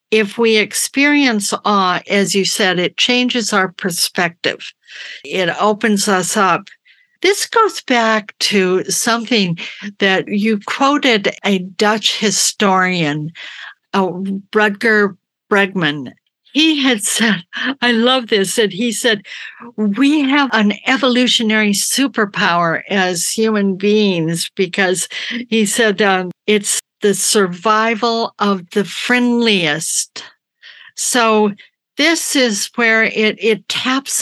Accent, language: American, English